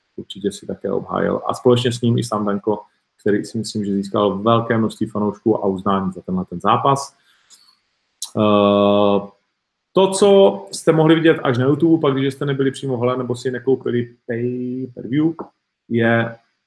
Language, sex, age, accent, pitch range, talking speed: Czech, male, 40-59, native, 105-135 Hz, 165 wpm